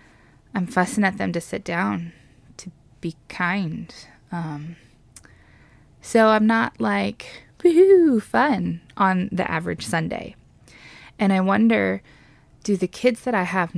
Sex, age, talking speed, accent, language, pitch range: female, 20-39, 130 wpm, American, English, 150-200 Hz